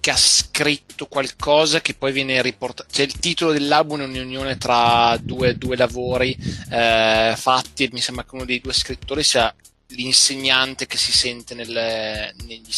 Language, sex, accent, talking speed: Italian, male, native, 160 wpm